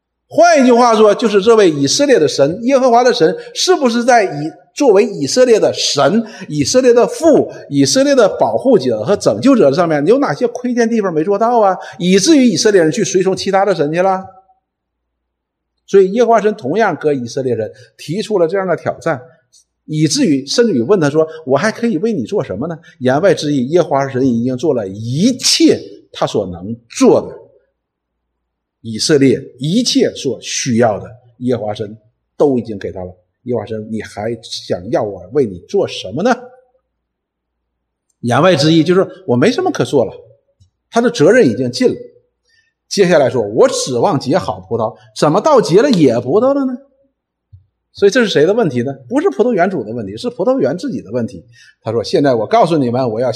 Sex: male